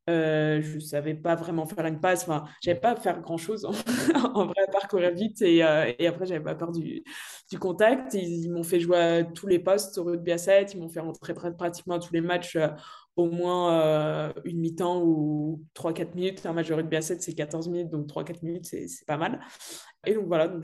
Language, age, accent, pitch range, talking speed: French, 20-39, French, 165-190 Hz, 225 wpm